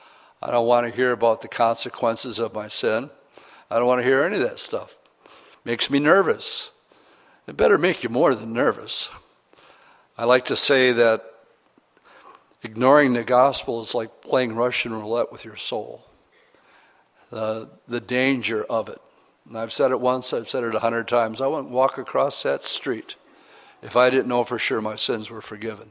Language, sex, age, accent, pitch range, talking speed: English, male, 60-79, American, 115-135 Hz, 185 wpm